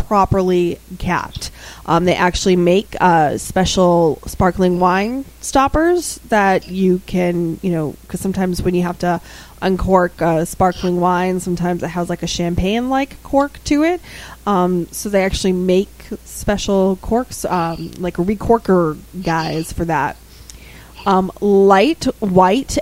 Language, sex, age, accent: English, female, 20-39, American